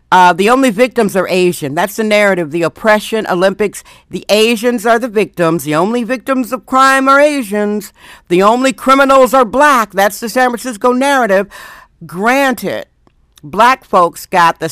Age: 60-79